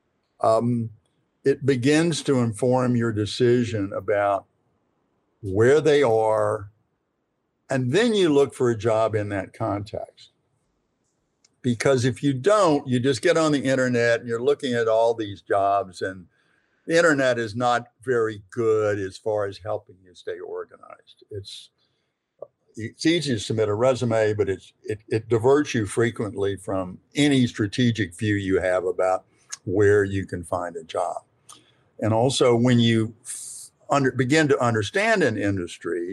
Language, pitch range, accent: English, 105-135 Hz, American